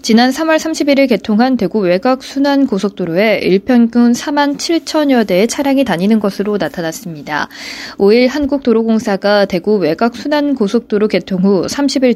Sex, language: female, Korean